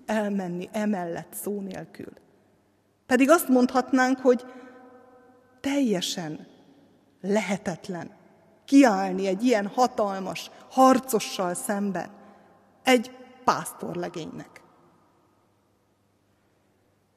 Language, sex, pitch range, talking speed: Hungarian, female, 145-245 Hz, 65 wpm